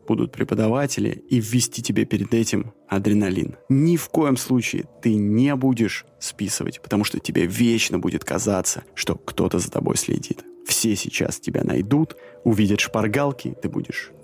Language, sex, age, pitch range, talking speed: Russian, male, 20-39, 105-130 Hz, 150 wpm